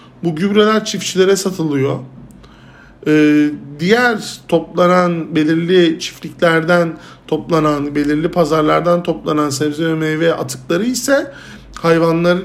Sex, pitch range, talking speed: male, 155-195 Hz, 90 wpm